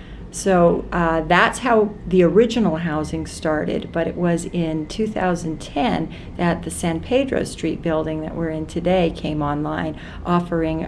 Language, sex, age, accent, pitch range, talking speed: English, female, 40-59, American, 165-190 Hz, 145 wpm